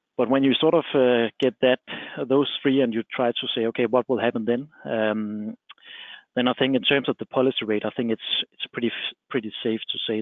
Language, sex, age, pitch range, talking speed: English, male, 30-49, 110-125 Hz, 230 wpm